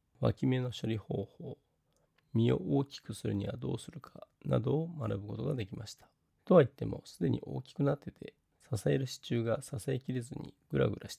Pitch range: 105-150 Hz